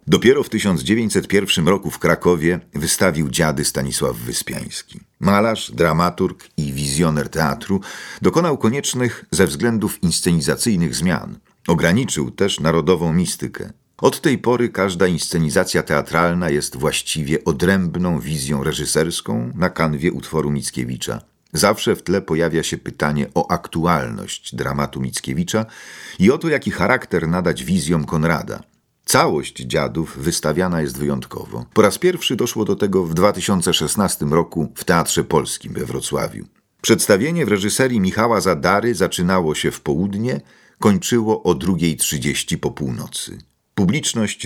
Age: 50-69